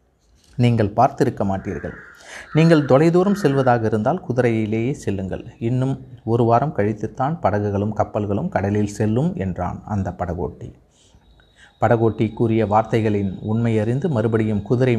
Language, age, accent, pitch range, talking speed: Tamil, 30-49, native, 100-125 Hz, 105 wpm